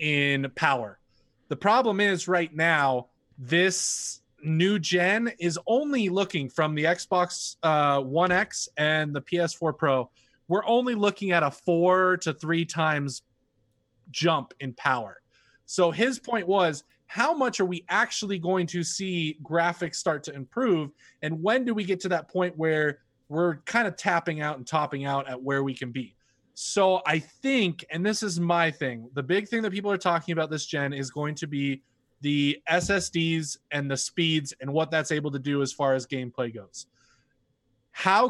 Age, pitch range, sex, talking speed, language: 20-39, 140-180 Hz, male, 175 wpm, English